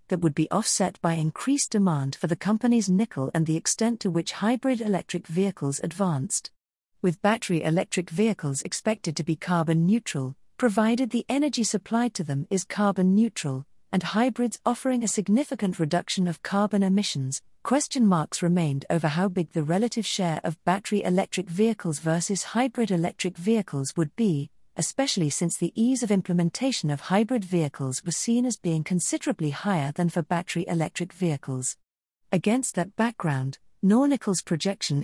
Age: 40-59